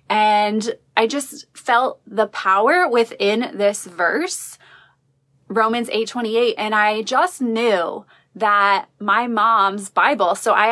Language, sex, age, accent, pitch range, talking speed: English, female, 20-39, American, 195-240 Hz, 120 wpm